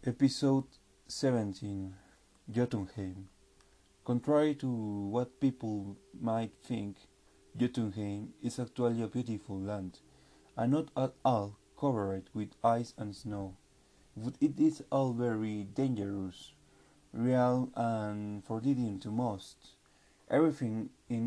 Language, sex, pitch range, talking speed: English, male, 100-125 Hz, 105 wpm